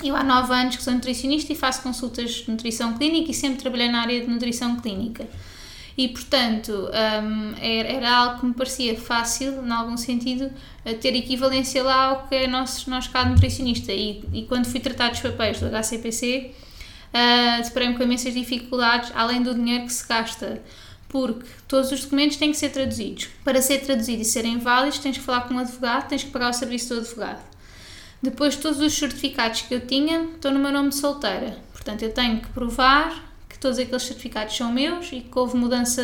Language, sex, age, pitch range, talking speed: Portuguese, female, 20-39, 235-265 Hz, 200 wpm